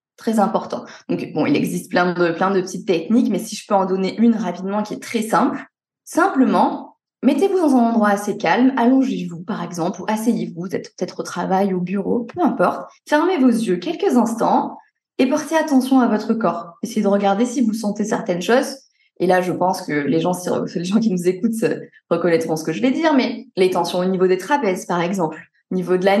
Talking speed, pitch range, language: 220 wpm, 190-255 Hz, French